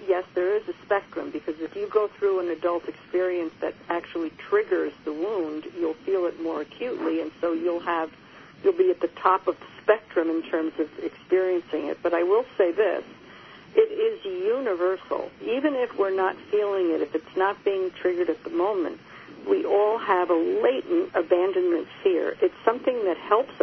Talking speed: 185 wpm